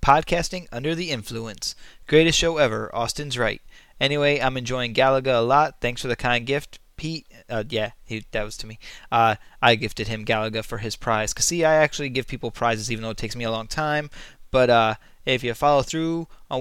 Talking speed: 210 wpm